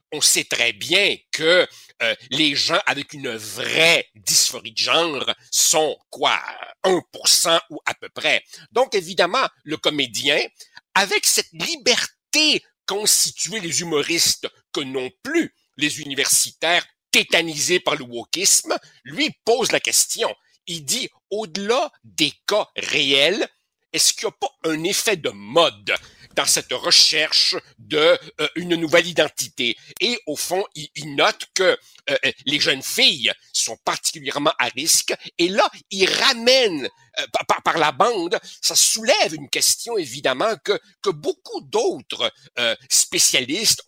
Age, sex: 60-79, male